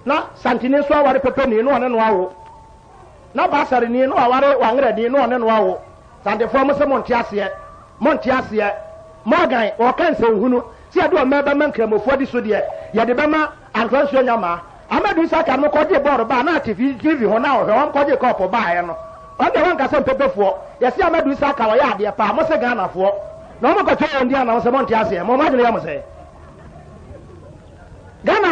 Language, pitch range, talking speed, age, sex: English, 225-305 Hz, 80 wpm, 40-59, male